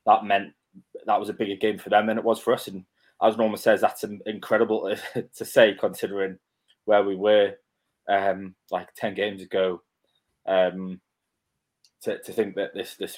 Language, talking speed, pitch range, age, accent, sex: English, 180 wpm, 95-110 Hz, 20-39, British, male